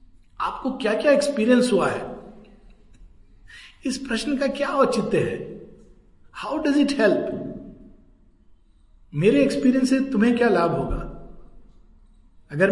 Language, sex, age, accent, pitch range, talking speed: Hindi, male, 50-69, native, 175-250 Hz, 115 wpm